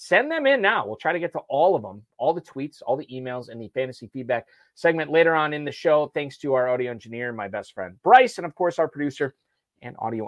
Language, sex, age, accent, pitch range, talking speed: English, male, 30-49, American, 130-165 Hz, 255 wpm